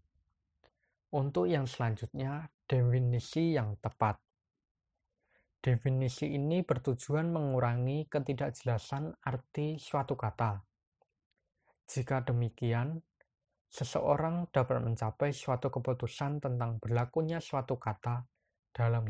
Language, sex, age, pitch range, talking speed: Malay, male, 20-39, 115-140 Hz, 80 wpm